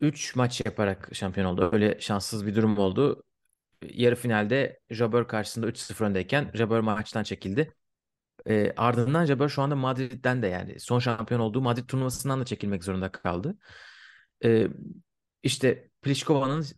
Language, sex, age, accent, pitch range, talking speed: Turkish, male, 30-49, native, 110-140 Hz, 140 wpm